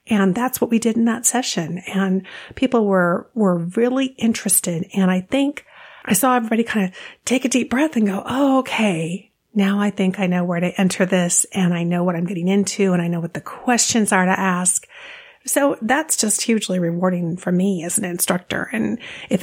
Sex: female